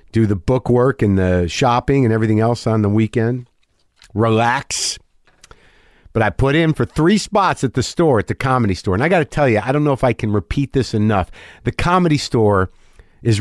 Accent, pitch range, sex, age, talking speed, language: American, 105-140 Hz, male, 50-69, 210 wpm, English